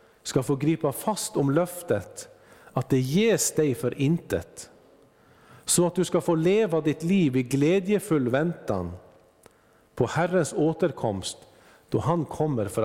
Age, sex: 50-69, male